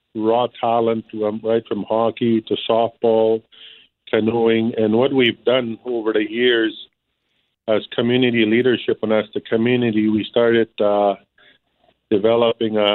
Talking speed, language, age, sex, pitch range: 120 wpm, English, 50-69, male, 110-115 Hz